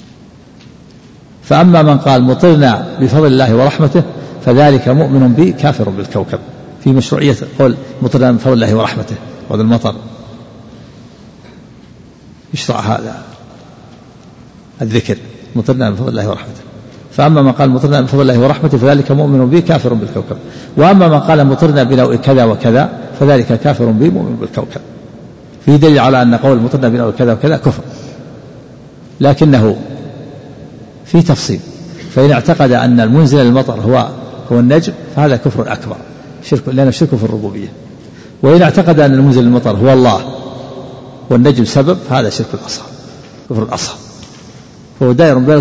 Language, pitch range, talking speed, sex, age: Arabic, 120-145 Hz, 130 wpm, male, 50-69